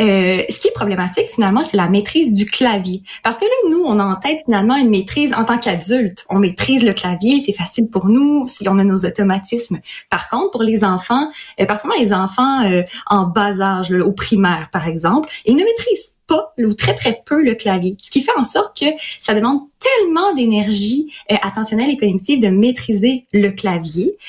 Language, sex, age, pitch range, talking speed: French, female, 20-39, 190-255 Hz, 205 wpm